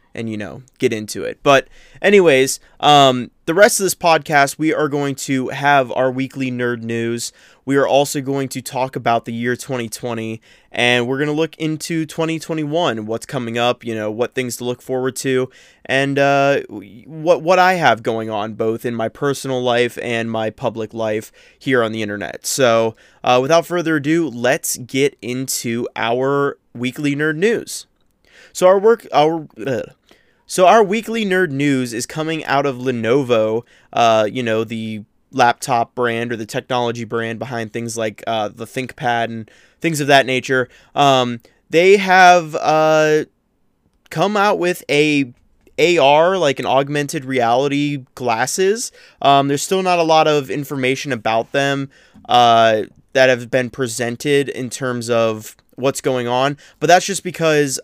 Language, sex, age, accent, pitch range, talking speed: English, male, 20-39, American, 120-150 Hz, 165 wpm